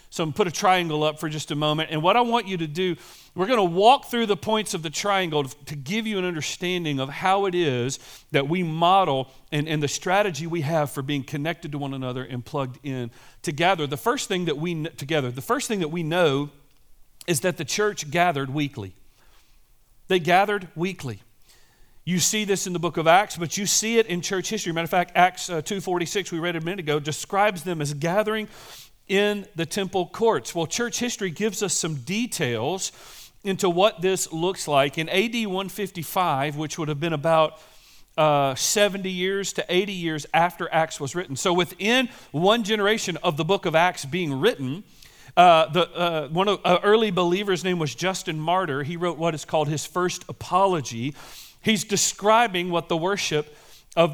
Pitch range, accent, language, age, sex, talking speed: 150-195 Hz, American, English, 40-59, male, 200 wpm